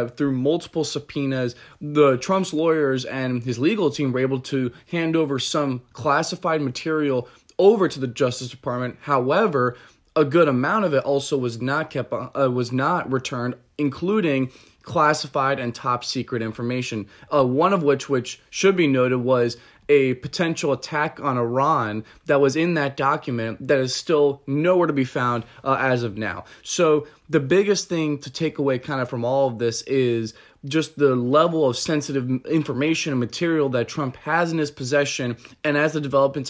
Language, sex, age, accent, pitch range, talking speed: English, male, 20-39, American, 125-150 Hz, 175 wpm